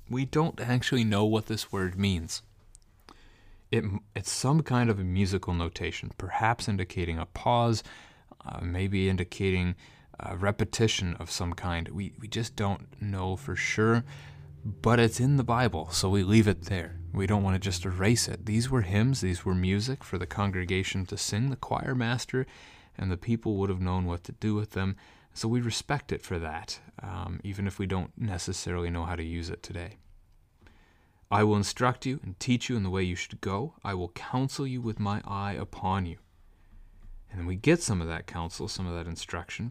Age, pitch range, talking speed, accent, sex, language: 30-49, 90-110 Hz, 195 wpm, American, male, English